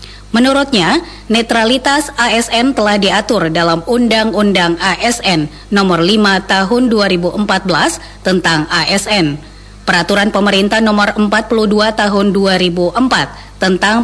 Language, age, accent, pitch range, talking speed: Indonesian, 30-49, native, 185-230 Hz, 90 wpm